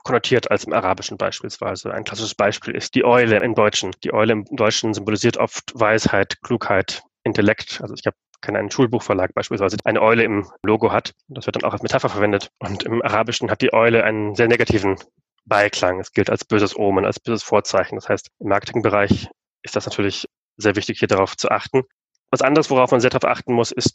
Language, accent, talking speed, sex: German, German, 205 wpm, male